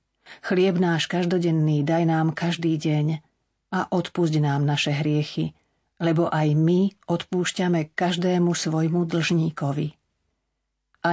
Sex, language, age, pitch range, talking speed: female, Slovak, 40-59, 150-180 Hz, 110 wpm